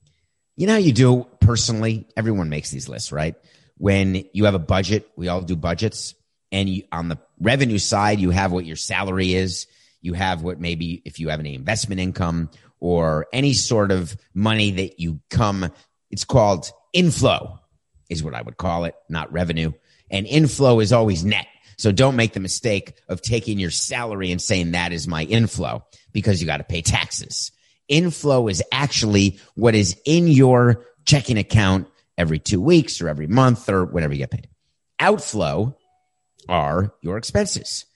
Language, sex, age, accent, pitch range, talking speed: English, male, 30-49, American, 90-120 Hz, 175 wpm